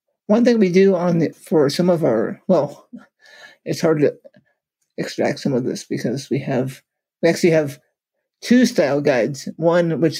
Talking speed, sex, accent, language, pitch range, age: 170 wpm, male, American, English, 145-180 Hz, 50-69